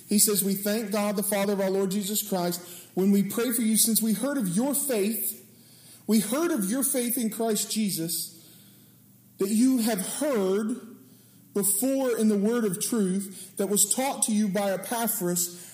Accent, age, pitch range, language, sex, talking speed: American, 40-59, 170-215 Hz, English, male, 185 wpm